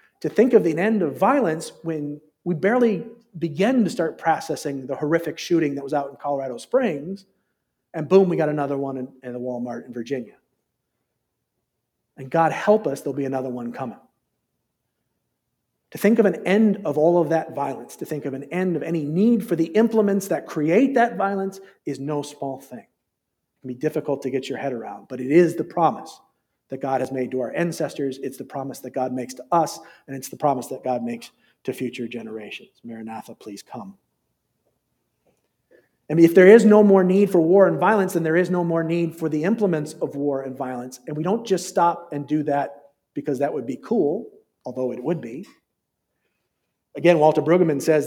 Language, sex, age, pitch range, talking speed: English, male, 40-59, 135-180 Hz, 200 wpm